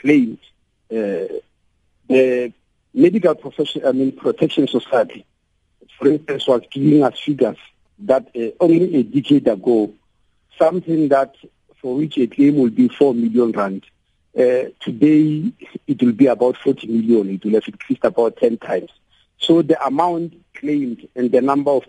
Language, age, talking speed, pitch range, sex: English, 50-69, 150 wpm, 125-205 Hz, male